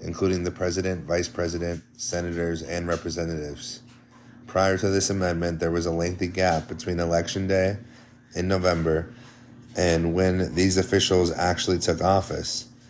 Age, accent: 30-49, American